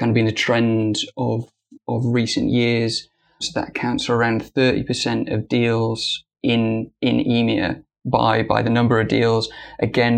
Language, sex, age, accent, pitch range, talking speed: English, male, 20-39, British, 115-120 Hz, 165 wpm